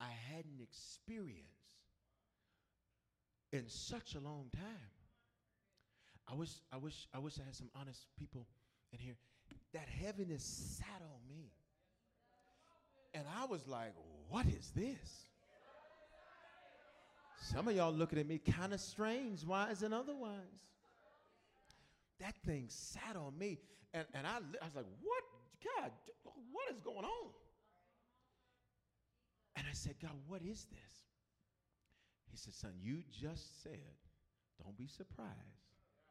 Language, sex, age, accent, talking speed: English, male, 40-59, American, 130 wpm